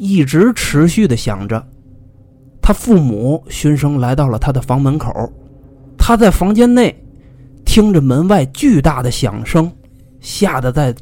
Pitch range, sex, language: 125-165 Hz, male, Chinese